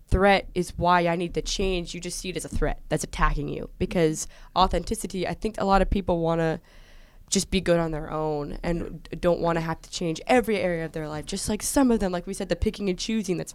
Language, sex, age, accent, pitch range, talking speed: English, female, 20-39, American, 160-190 Hz, 255 wpm